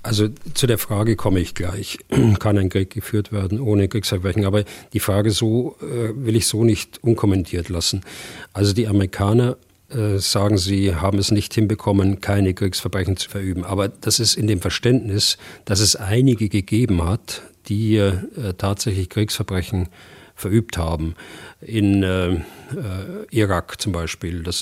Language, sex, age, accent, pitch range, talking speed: German, male, 40-59, German, 95-110 Hz, 145 wpm